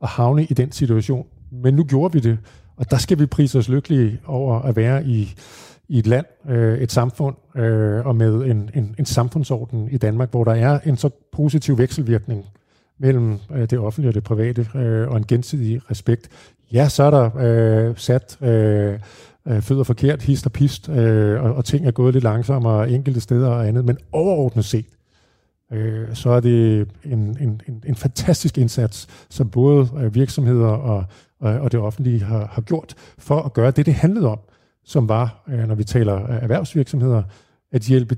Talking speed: 165 wpm